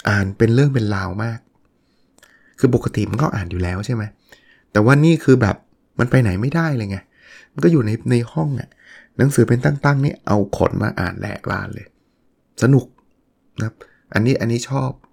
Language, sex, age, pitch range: Thai, male, 20-39, 105-135 Hz